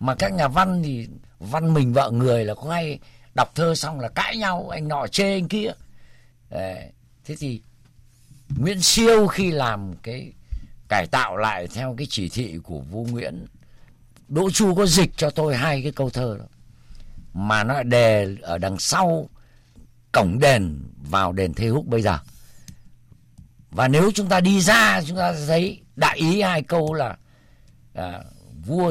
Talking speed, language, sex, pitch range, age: 170 wpm, Vietnamese, male, 110-155 Hz, 50-69